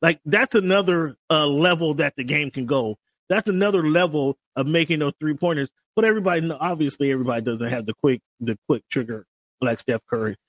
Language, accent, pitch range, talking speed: English, American, 125-160 Hz, 185 wpm